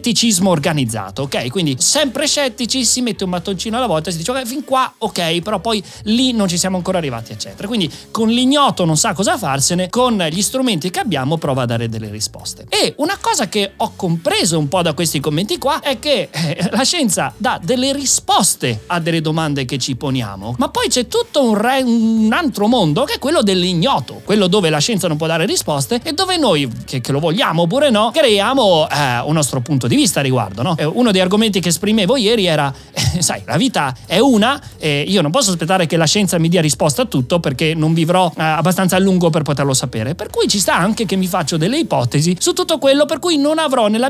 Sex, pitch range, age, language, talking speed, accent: male, 155-245 Hz, 30-49, Italian, 220 wpm, native